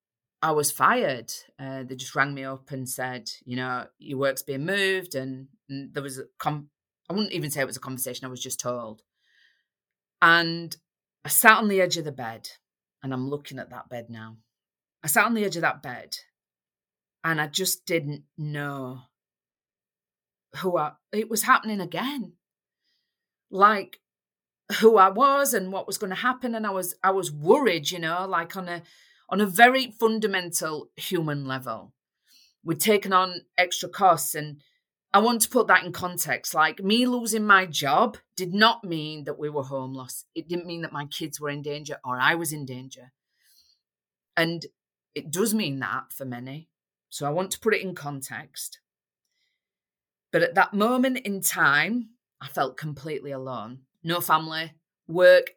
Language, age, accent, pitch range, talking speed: English, 30-49, British, 140-200 Hz, 175 wpm